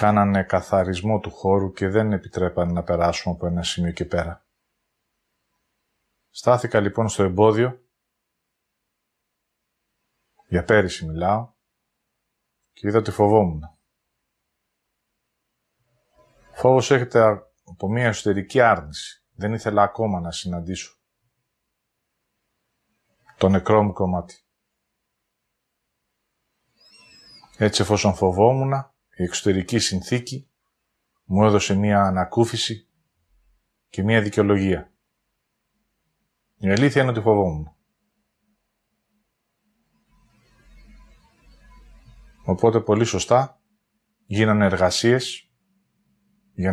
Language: English